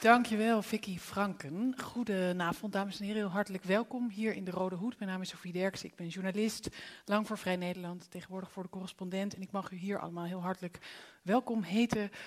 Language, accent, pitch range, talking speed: Dutch, Dutch, 185-220 Hz, 200 wpm